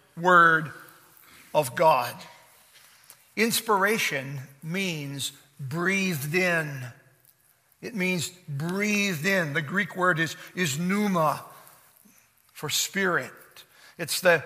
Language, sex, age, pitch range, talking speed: English, male, 50-69, 160-200 Hz, 85 wpm